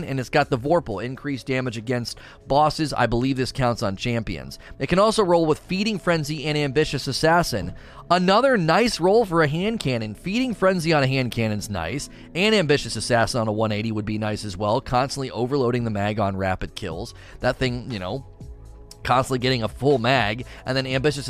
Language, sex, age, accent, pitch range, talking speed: English, male, 30-49, American, 110-150 Hz, 195 wpm